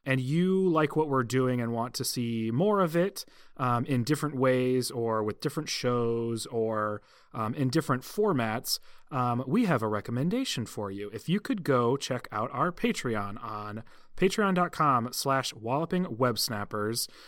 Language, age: English, 30-49